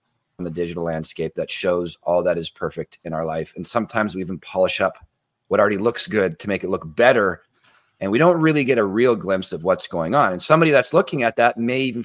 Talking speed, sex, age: 240 wpm, male, 30-49